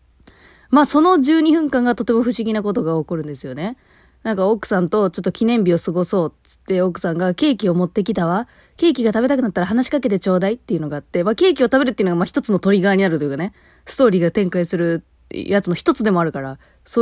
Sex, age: female, 20-39